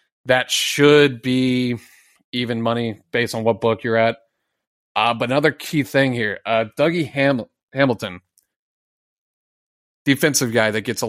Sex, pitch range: male, 110-130 Hz